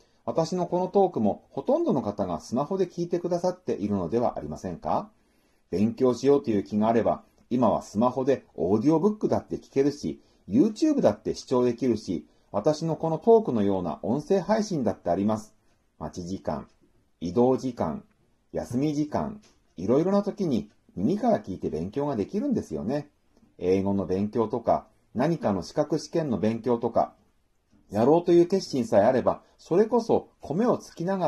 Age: 40-59